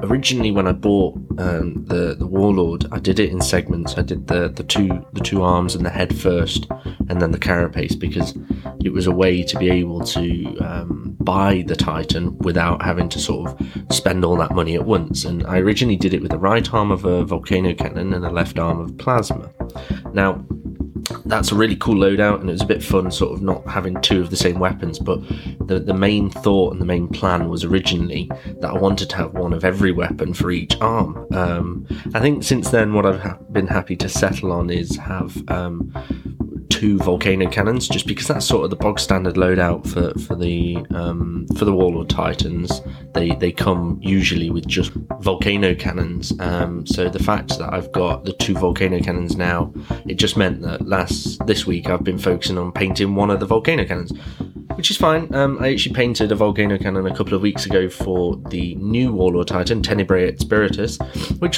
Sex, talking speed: male, 205 wpm